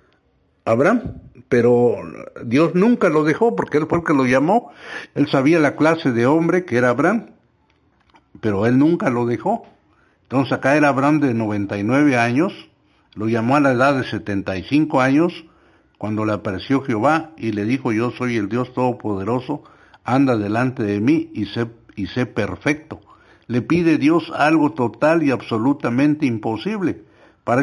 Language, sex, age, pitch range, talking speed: Spanish, male, 60-79, 110-150 Hz, 155 wpm